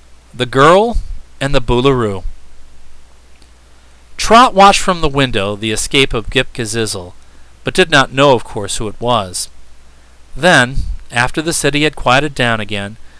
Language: English